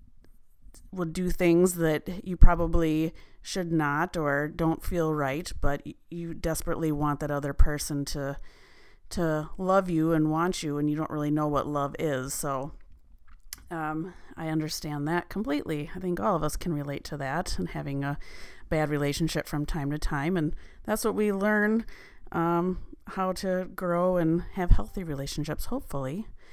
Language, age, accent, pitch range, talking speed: English, 30-49, American, 150-180 Hz, 165 wpm